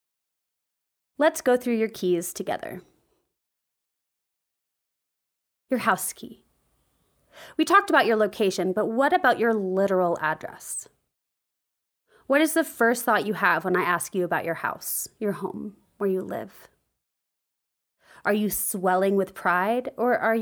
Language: English